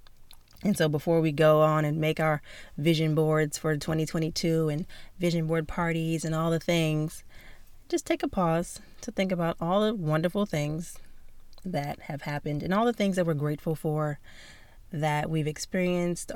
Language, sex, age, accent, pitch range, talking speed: English, female, 30-49, American, 140-175 Hz, 170 wpm